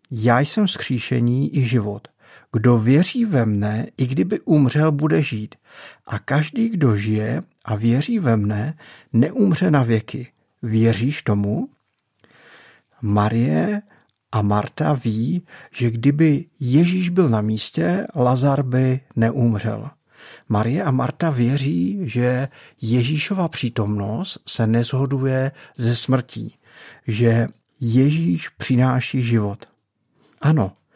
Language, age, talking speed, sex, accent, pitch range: Czech, 50-69, 110 wpm, male, native, 110-140 Hz